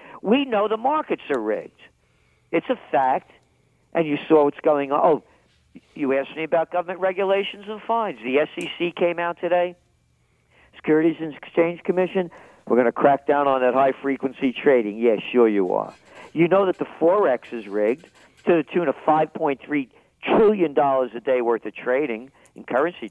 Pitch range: 130-170 Hz